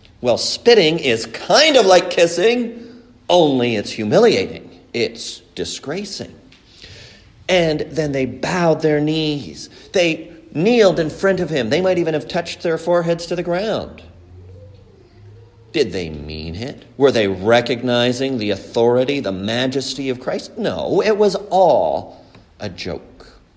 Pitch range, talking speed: 100-170 Hz, 135 wpm